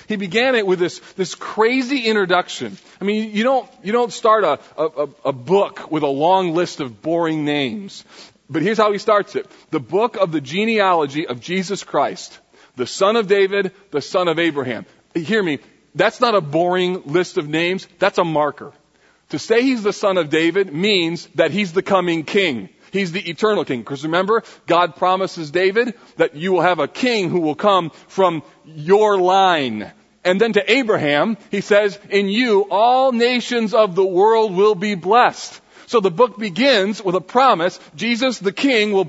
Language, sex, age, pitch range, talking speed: English, male, 40-59, 175-225 Hz, 185 wpm